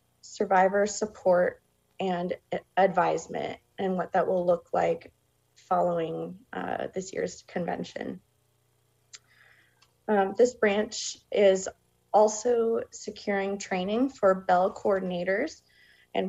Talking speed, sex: 95 wpm, female